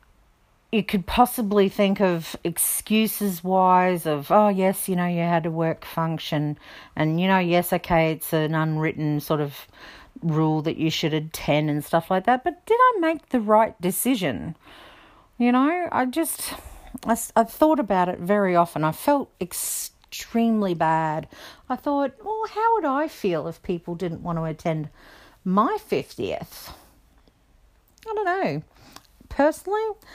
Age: 50-69